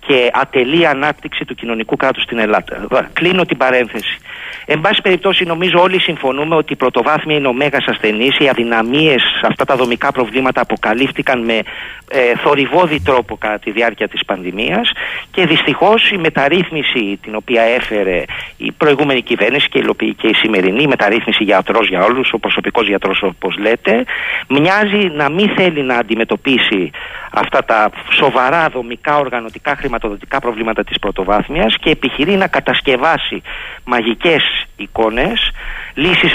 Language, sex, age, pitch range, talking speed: Greek, male, 40-59, 120-165 Hz, 140 wpm